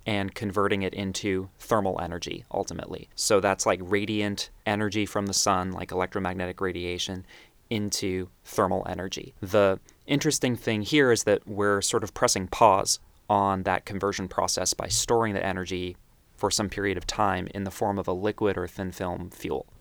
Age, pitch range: 20-39, 95-110 Hz